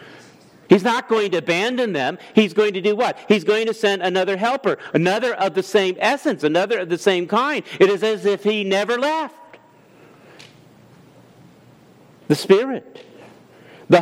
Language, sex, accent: English, male, American